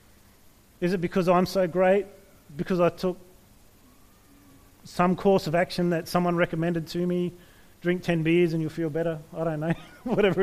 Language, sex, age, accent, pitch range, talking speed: English, male, 30-49, Australian, 165-210 Hz, 165 wpm